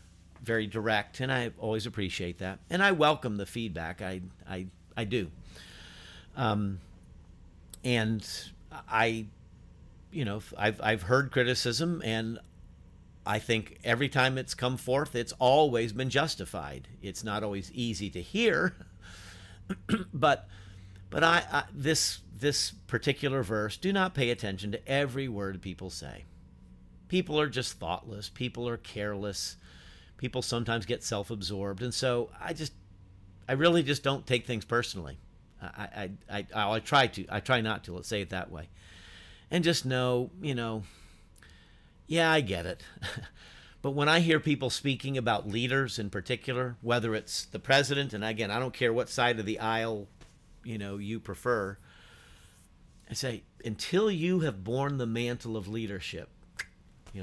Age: 50-69